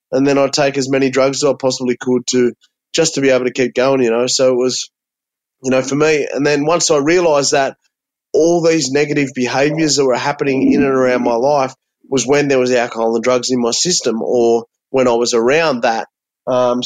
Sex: male